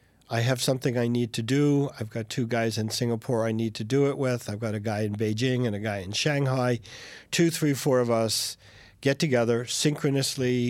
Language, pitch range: English, 115-135 Hz